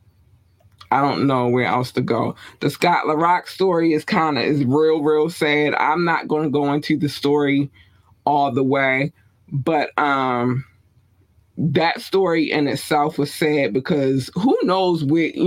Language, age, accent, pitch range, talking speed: English, 20-39, American, 130-175 Hz, 160 wpm